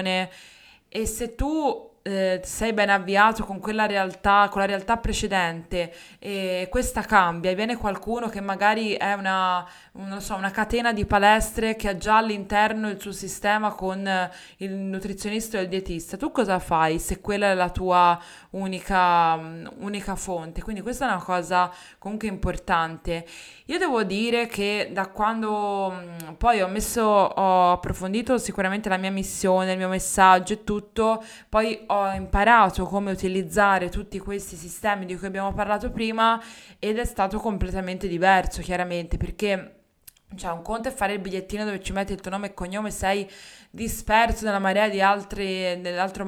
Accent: native